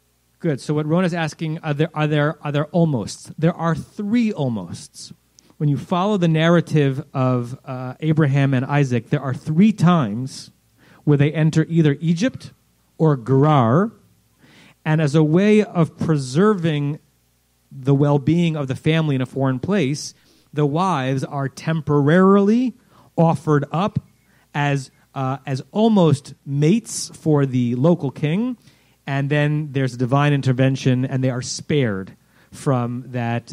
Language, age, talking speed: English, 30-49, 140 wpm